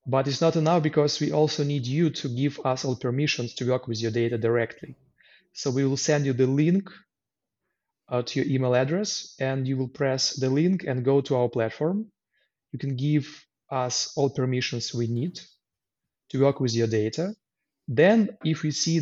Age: 30-49